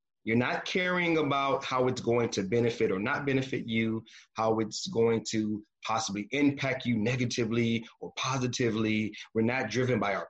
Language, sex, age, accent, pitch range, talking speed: English, male, 30-49, American, 110-145 Hz, 165 wpm